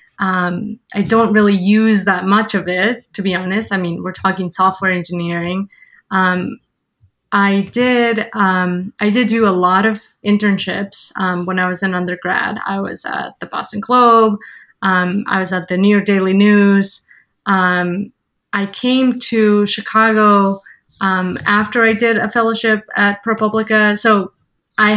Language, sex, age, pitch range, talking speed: English, female, 20-39, 185-215 Hz, 155 wpm